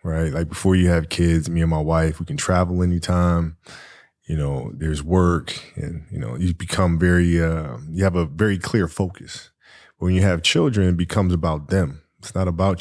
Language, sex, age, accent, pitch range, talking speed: English, male, 20-39, American, 90-100 Hz, 195 wpm